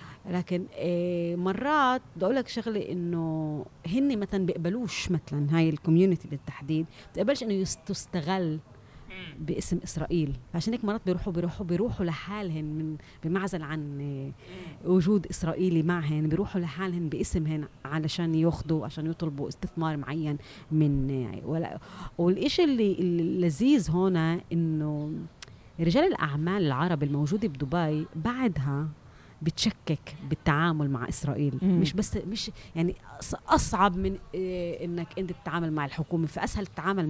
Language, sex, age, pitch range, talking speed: Arabic, female, 30-49, 155-190 Hz, 115 wpm